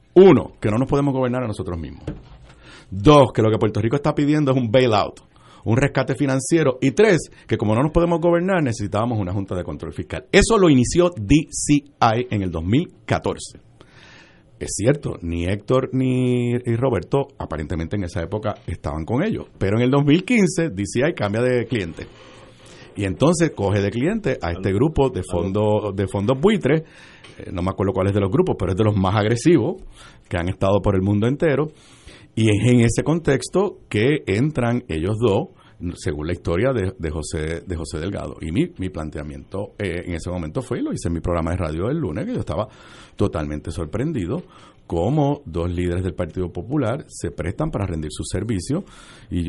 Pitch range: 90-135 Hz